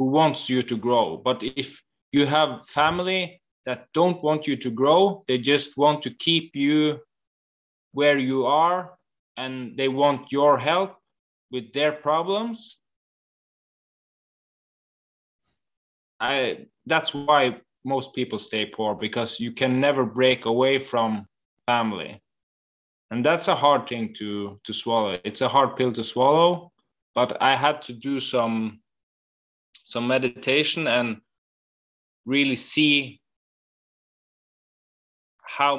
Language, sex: English, male